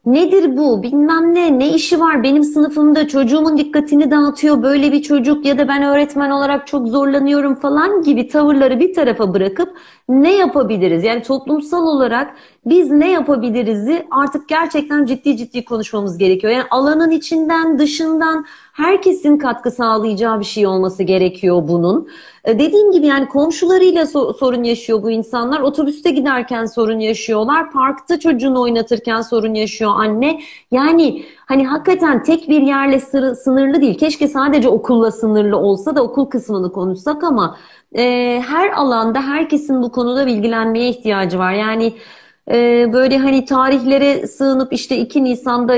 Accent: native